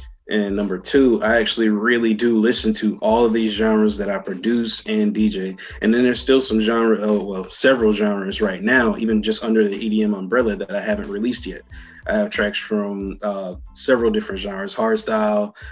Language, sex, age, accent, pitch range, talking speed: English, male, 20-39, American, 100-115 Hz, 190 wpm